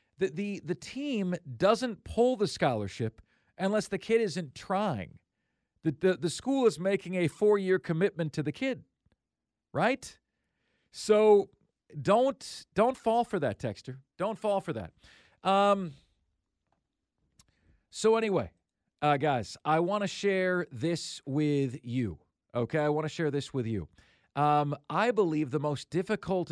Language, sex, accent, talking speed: English, male, American, 145 wpm